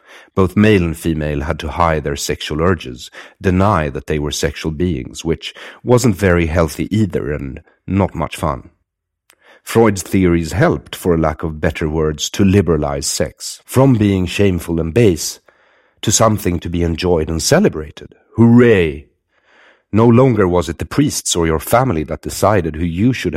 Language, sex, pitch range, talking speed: English, male, 75-95 Hz, 160 wpm